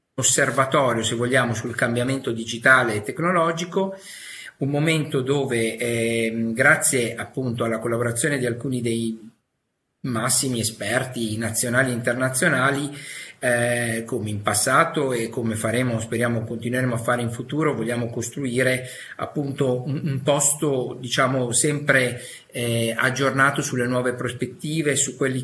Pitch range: 115-135 Hz